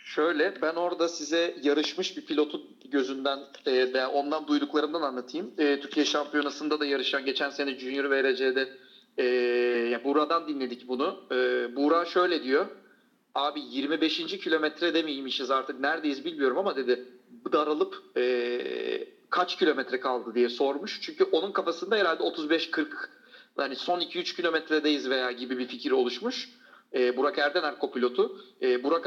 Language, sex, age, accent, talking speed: Turkish, male, 40-59, native, 130 wpm